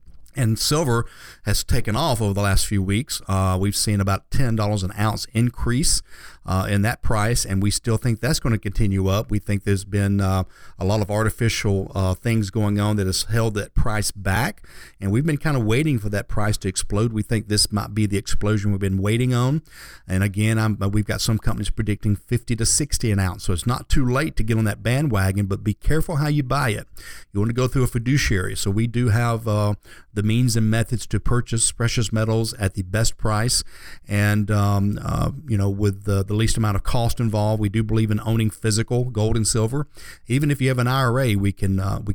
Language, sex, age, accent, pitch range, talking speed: English, male, 50-69, American, 100-115 Hz, 225 wpm